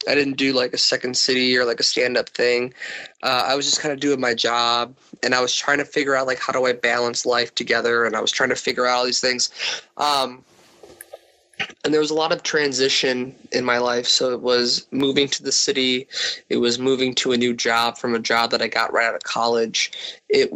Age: 20-39